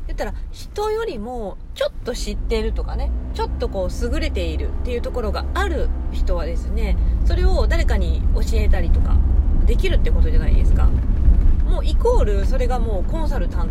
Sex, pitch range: female, 70-90 Hz